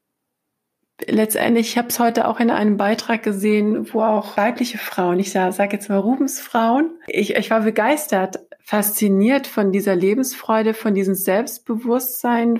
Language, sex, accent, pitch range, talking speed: German, female, German, 200-230 Hz, 145 wpm